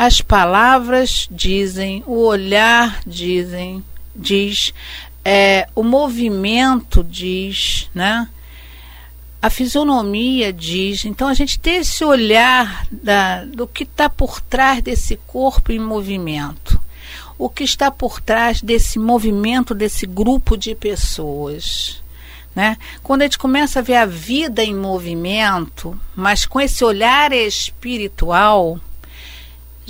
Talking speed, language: 120 wpm, Portuguese